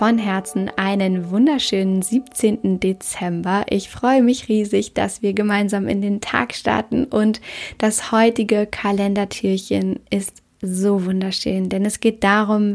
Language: German